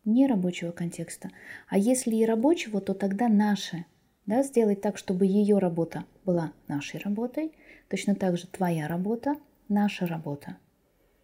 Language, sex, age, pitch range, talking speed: Russian, female, 20-39, 170-220 Hz, 140 wpm